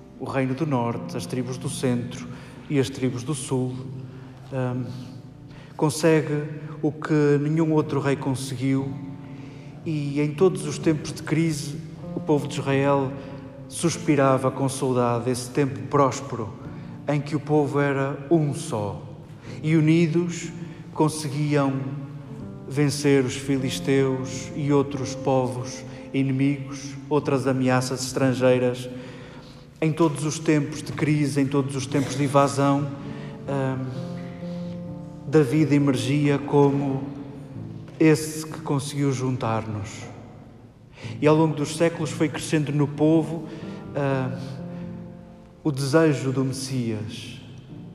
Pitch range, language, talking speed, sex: 130-150 Hz, Portuguese, 115 wpm, male